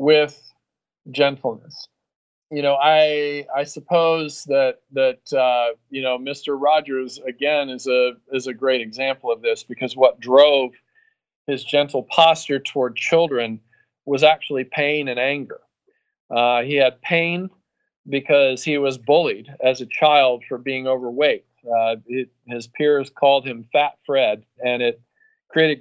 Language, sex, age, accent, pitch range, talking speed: English, male, 40-59, American, 125-155 Hz, 140 wpm